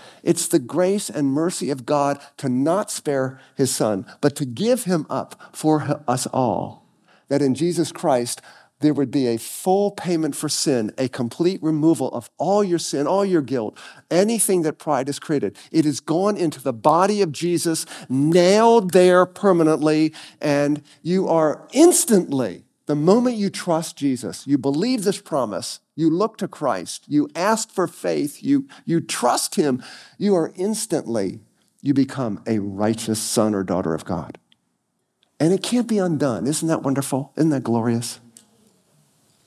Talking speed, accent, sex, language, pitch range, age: 160 wpm, American, male, English, 125-175 Hz, 50-69